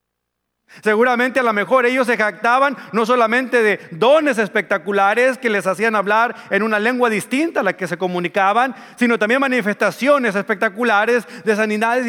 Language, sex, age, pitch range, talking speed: Spanish, male, 40-59, 175-240 Hz, 155 wpm